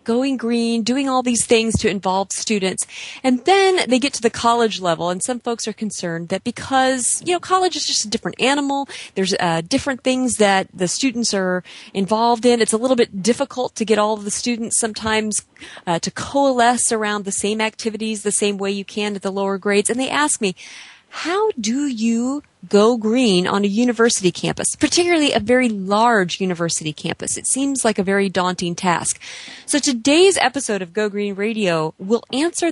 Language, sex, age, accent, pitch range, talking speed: English, female, 30-49, American, 195-255 Hz, 195 wpm